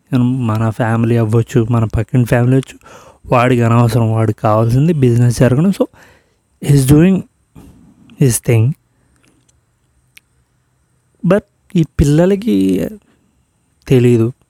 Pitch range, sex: 120-145 Hz, male